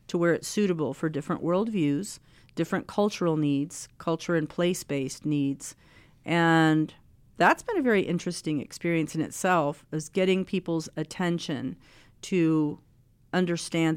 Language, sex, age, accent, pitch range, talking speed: English, female, 40-59, American, 150-170 Hz, 125 wpm